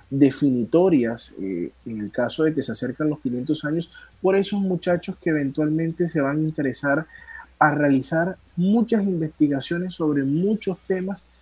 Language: Spanish